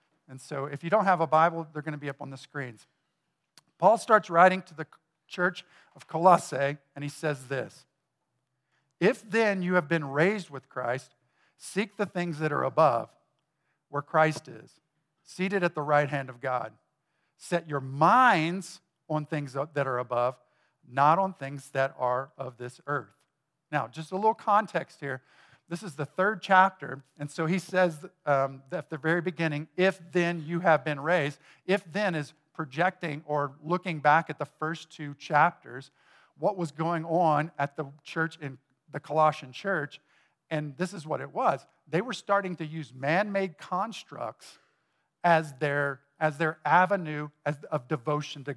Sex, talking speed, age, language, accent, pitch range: male, 170 wpm, 50-69, English, American, 145-175 Hz